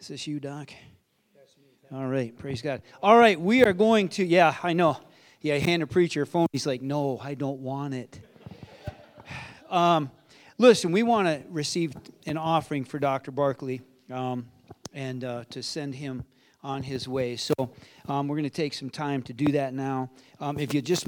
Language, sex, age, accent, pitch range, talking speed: English, male, 40-59, American, 135-165 Hz, 195 wpm